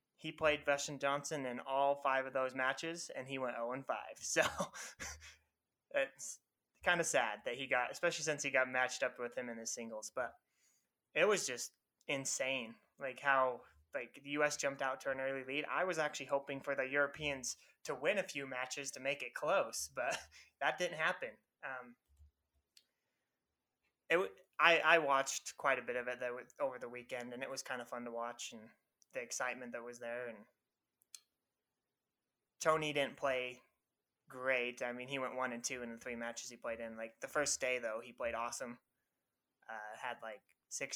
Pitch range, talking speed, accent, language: 120-140 Hz, 190 wpm, American, English